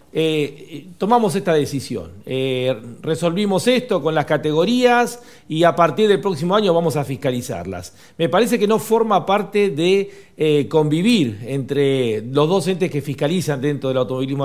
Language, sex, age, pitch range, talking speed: Spanish, male, 40-59, 145-210 Hz, 160 wpm